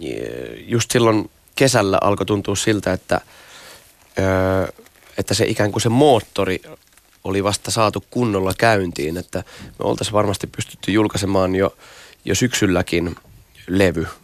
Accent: native